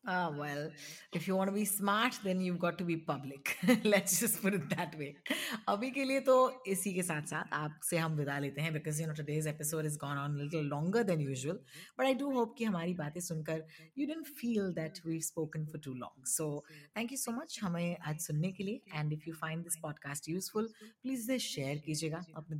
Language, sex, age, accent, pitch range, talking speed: Hindi, female, 30-49, native, 150-195 Hz, 200 wpm